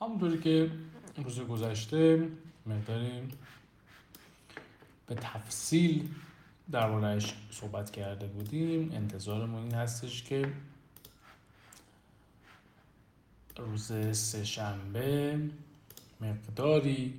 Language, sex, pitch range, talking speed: Persian, male, 105-140 Hz, 65 wpm